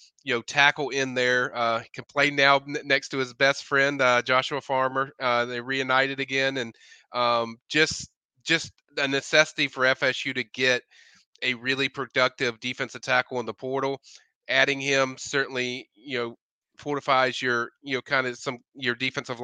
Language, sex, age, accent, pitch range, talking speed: English, male, 30-49, American, 120-135 Hz, 165 wpm